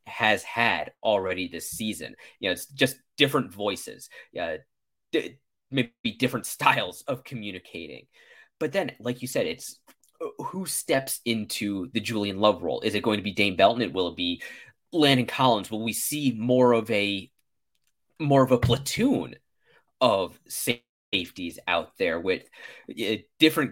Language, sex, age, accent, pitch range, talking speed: English, male, 30-49, American, 105-135 Hz, 150 wpm